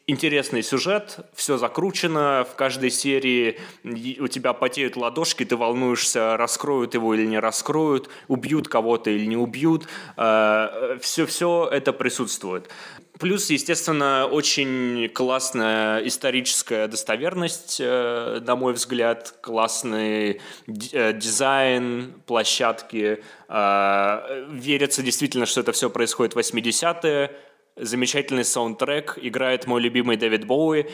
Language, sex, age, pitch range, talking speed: Russian, male, 20-39, 115-150 Hz, 105 wpm